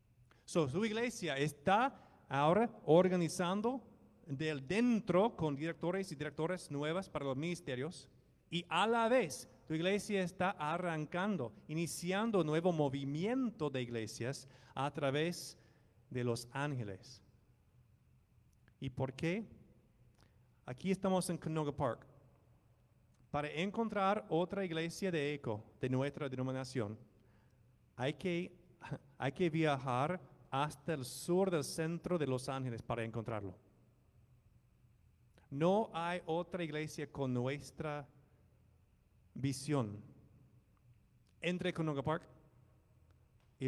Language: English